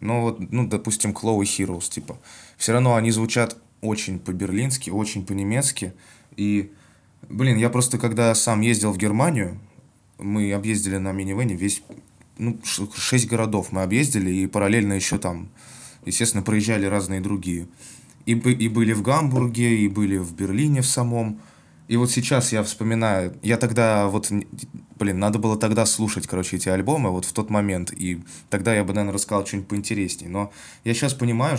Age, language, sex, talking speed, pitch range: 20-39, Russian, male, 160 wpm, 100-115 Hz